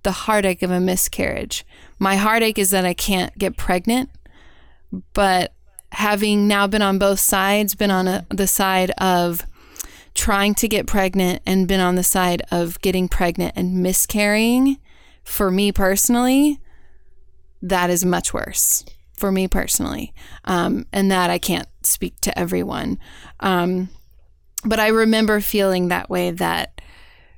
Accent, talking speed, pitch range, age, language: American, 140 wpm, 180-205 Hz, 20-39, English